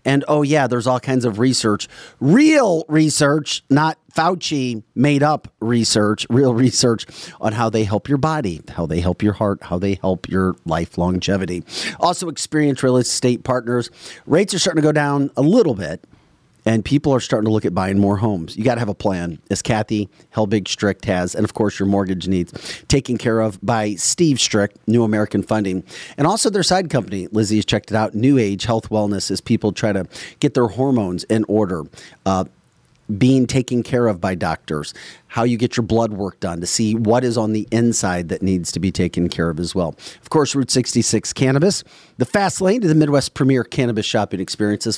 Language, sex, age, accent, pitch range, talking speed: English, male, 40-59, American, 100-135 Hz, 205 wpm